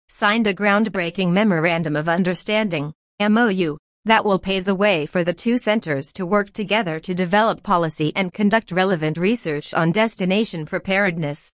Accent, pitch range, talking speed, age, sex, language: American, 165-215 Hz, 150 wpm, 40-59, female, English